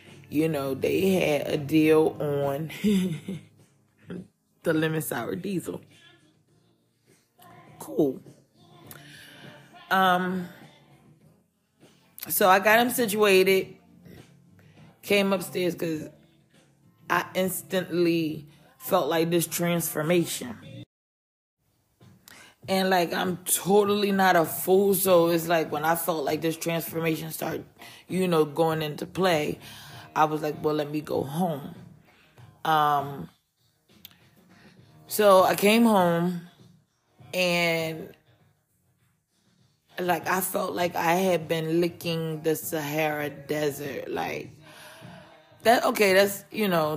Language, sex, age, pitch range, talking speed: English, female, 20-39, 150-180 Hz, 100 wpm